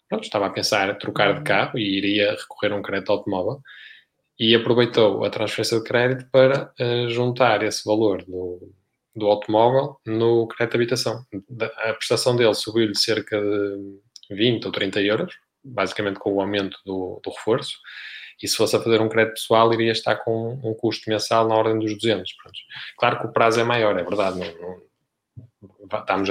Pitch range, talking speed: 105-120 Hz, 185 wpm